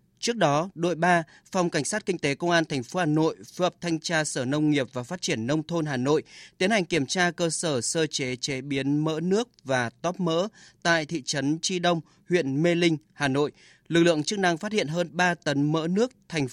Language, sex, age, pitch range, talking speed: Vietnamese, male, 20-39, 145-180 Hz, 240 wpm